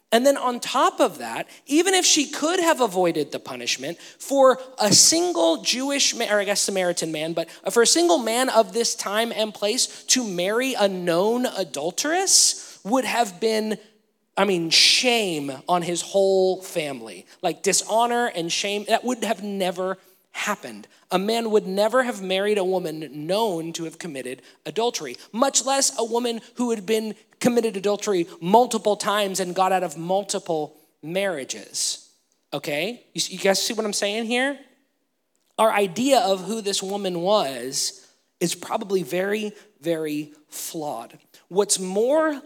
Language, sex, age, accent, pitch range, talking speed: English, male, 20-39, American, 180-240 Hz, 155 wpm